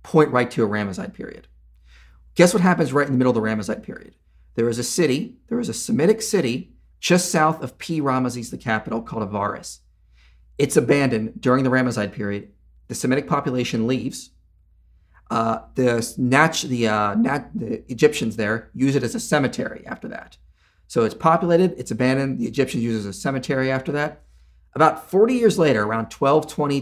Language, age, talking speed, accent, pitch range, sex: English, 40-59, 180 wpm, American, 100-145 Hz, male